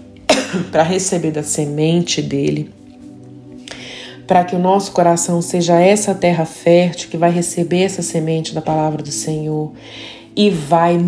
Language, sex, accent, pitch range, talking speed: Portuguese, female, Brazilian, 155-200 Hz, 135 wpm